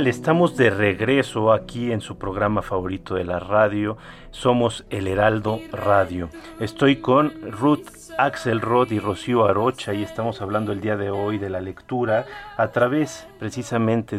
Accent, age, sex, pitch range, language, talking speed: Mexican, 40-59, male, 100-120 Hz, Spanish, 150 wpm